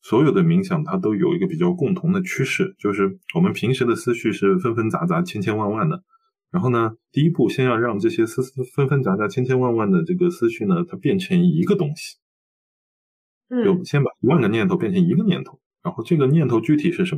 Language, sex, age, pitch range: Chinese, male, 20-39, 145-185 Hz